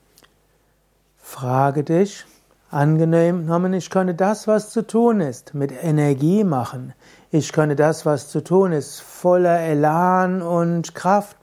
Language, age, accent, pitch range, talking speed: German, 60-79, German, 150-185 Hz, 125 wpm